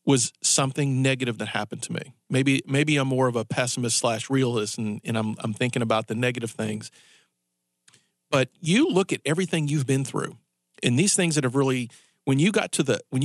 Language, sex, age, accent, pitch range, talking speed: English, male, 40-59, American, 120-155 Hz, 205 wpm